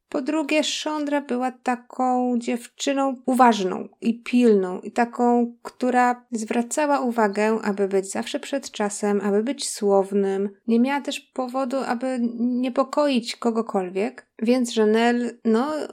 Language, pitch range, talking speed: Polish, 210-260 Hz, 120 wpm